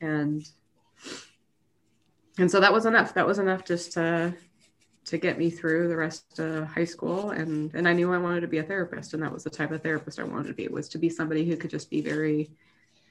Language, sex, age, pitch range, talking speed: English, female, 20-39, 155-175 Hz, 235 wpm